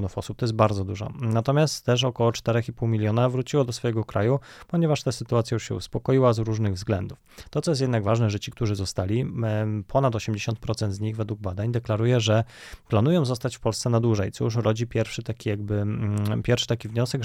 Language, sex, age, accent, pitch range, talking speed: Polish, male, 20-39, native, 110-125 Hz, 190 wpm